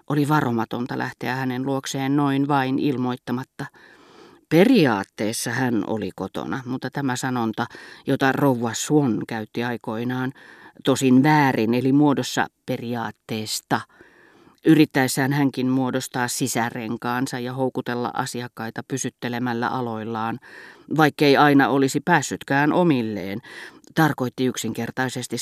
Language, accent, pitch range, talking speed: Finnish, native, 120-140 Hz, 95 wpm